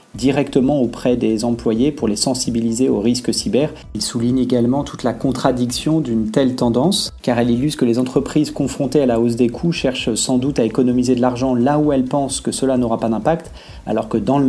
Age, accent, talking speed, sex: 30-49, French, 210 wpm, male